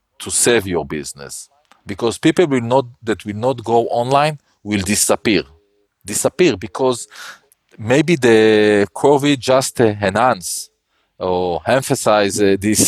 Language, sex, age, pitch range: Thai, male, 40-59, 100-125 Hz